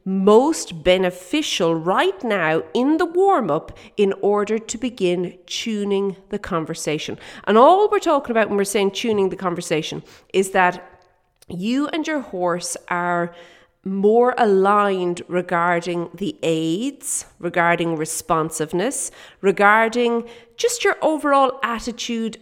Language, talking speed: English, 120 wpm